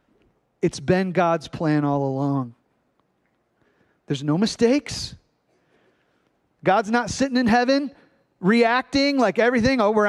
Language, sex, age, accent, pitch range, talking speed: English, male, 30-49, American, 155-230 Hz, 115 wpm